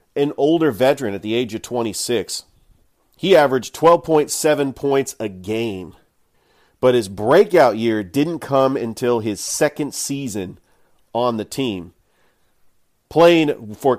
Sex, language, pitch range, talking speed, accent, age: male, English, 110-140 Hz, 125 wpm, American, 40-59